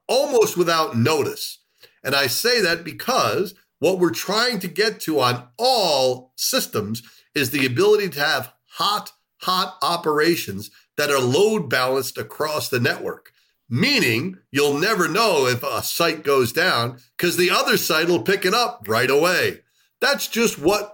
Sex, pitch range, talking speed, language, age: male, 135-190 Hz, 155 wpm, English, 50-69